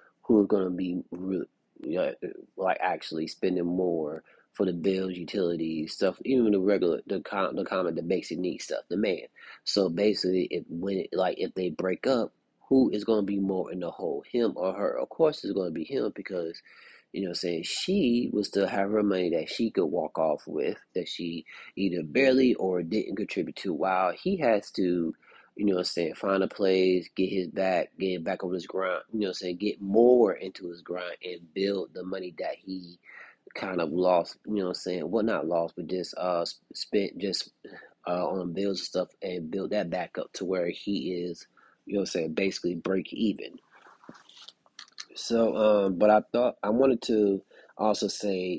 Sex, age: male, 30-49